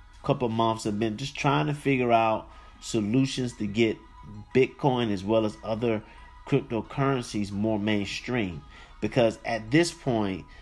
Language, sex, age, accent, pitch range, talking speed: English, male, 30-49, American, 110-135 Hz, 140 wpm